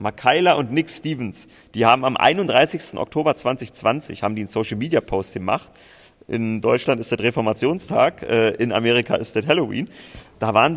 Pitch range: 115-140 Hz